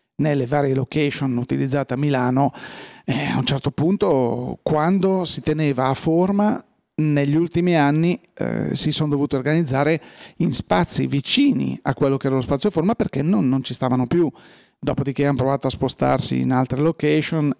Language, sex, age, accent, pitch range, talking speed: Italian, male, 40-59, native, 135-160 Hz, 165 wpm